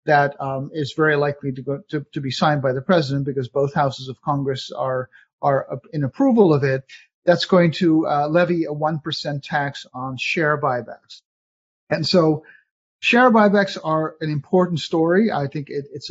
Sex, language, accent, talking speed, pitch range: male, English, American, 170 wpm, 140-170 Hz